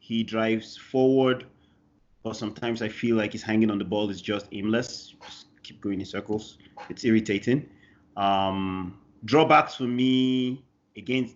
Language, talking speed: English, 150 wpm